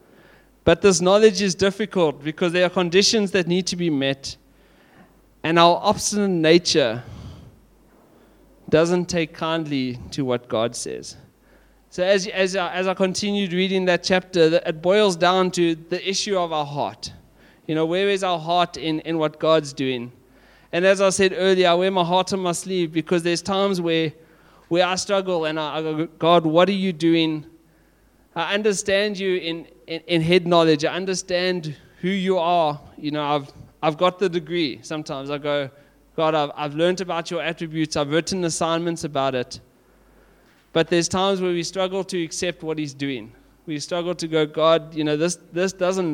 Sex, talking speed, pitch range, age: male, 180 wpm, 155-185 Hz, 30-49